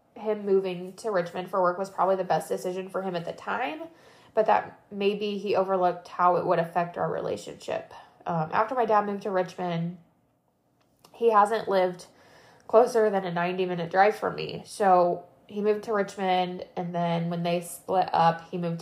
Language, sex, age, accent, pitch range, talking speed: English, female, 20-39, American, 175-205 Hz, 185 wpm